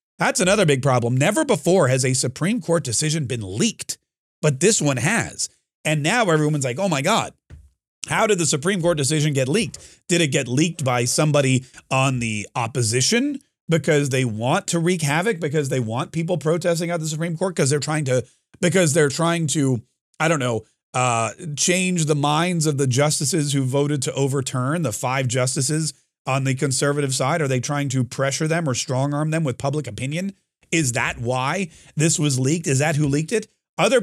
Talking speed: 195 wpm